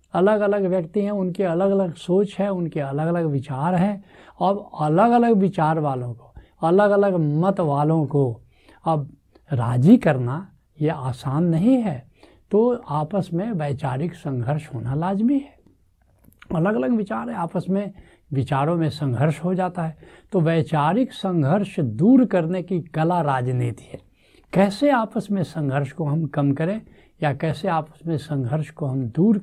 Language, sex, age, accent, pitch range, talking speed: Hindi, male, 70-89, native, 145-195 Hz, 155 wpm